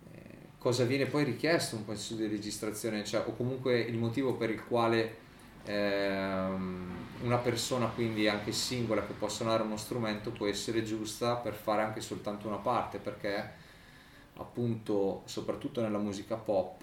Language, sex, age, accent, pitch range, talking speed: Italian, male, 20-39, native, 105-115 Hz, 150 wpm